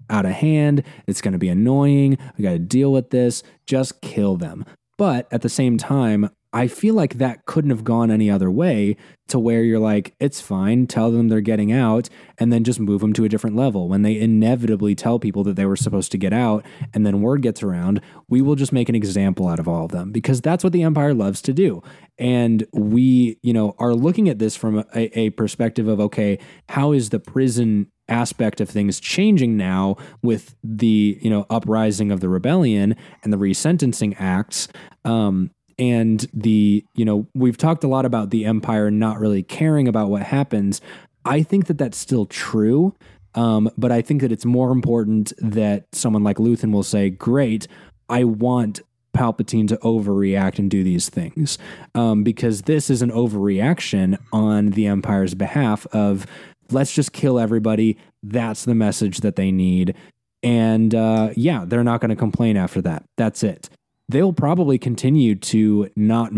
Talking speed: 190 wpm